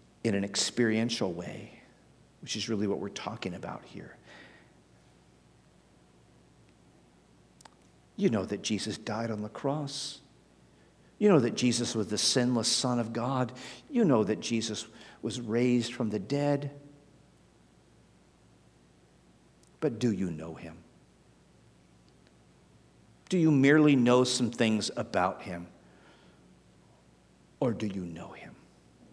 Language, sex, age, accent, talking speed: English, male, 50-69, American, 115 wpm